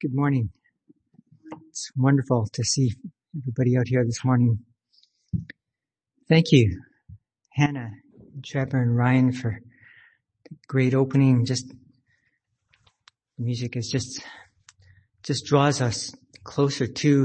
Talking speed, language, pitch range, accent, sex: 110 wpm, English, 120-145 Hz, American, male